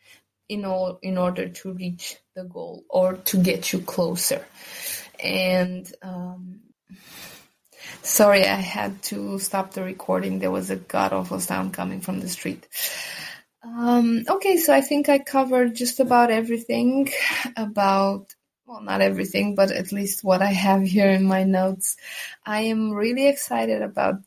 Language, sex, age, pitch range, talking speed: English, female, 20-39, 185-225 Hz, 150 wpm